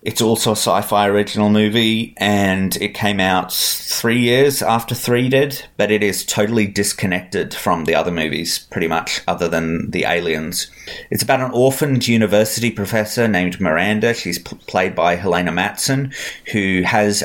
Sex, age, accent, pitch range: male, 30-49, Australian, 95-120 Hz